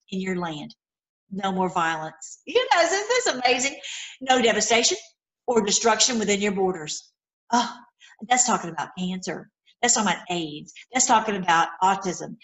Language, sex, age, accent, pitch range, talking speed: English, female, 50-69, American, 185-230 Hz, 150 wpm